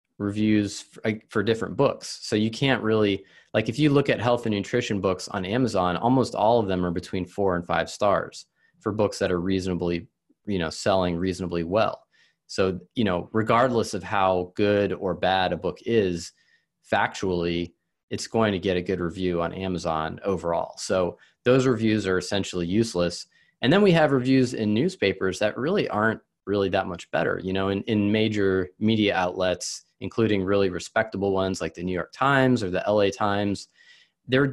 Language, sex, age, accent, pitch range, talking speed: English, male, 20-39, American, 95-115 Hz, 180 wpm